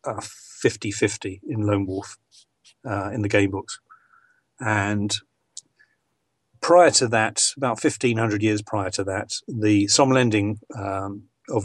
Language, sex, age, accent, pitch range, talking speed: English, male, 40-59, British, 100-120 Hz, 120 wpm